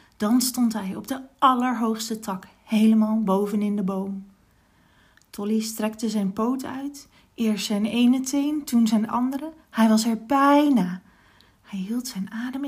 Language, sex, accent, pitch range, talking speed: Dutch, female, Dutch, 210-280 Hz, 150 wpm